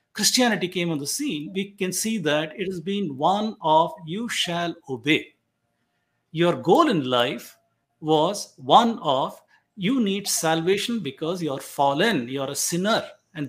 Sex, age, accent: male, 50-69, Indian